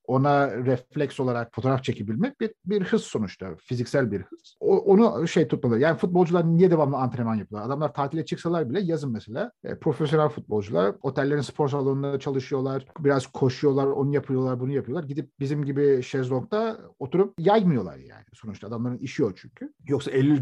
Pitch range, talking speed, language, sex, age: 120-165 Hz, 160 wpm, Turkish, male, 50-69